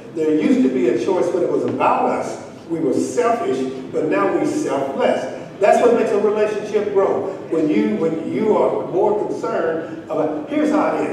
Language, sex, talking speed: English, male, 190 wpm